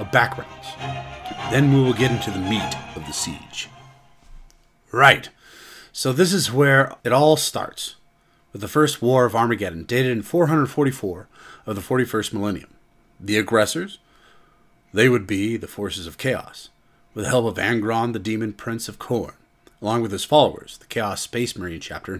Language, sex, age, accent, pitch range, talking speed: English, male, 40-59, American, 105-130 Hz, 160 wpm